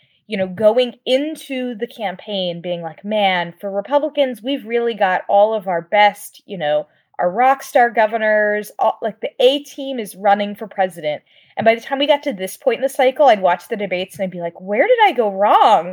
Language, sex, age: English, female, 20-39